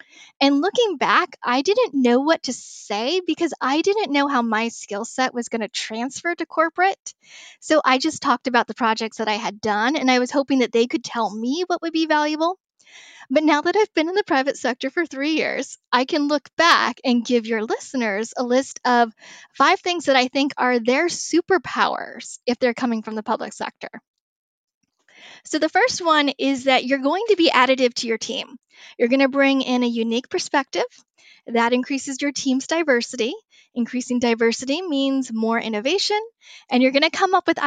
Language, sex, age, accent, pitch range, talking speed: English, female, 10-29, American, 245-315 Hz, 200 wpm